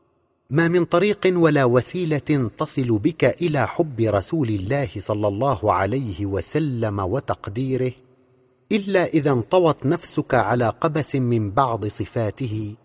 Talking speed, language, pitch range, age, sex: 115 wpm, Arabic, 110-150 Hz, 50-69, male